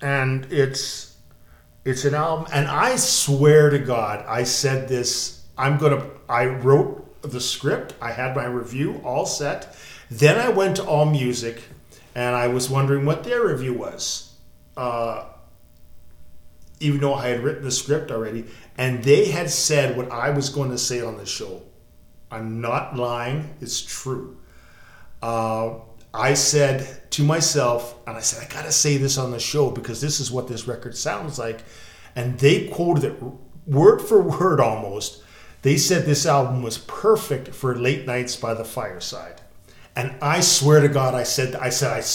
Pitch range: 120-145 Hz